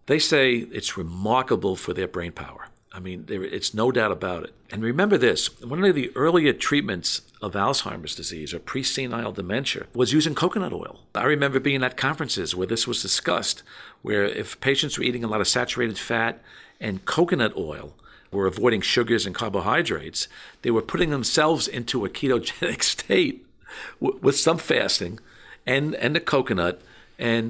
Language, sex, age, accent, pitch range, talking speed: English, male, 50-69, American, 110-140 Hz, 170 wpm